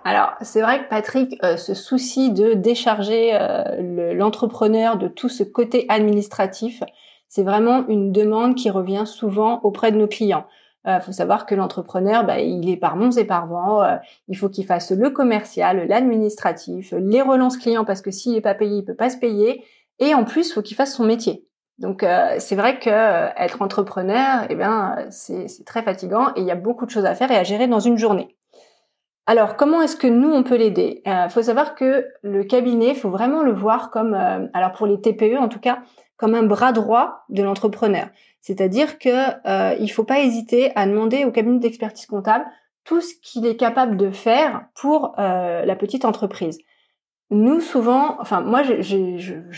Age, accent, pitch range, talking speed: 30-49, French, 200-245 Hz, 205 wpm